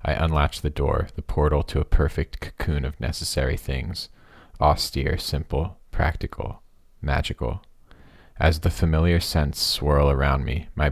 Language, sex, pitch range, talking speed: English, male, 70-85 Hz, 135 wpm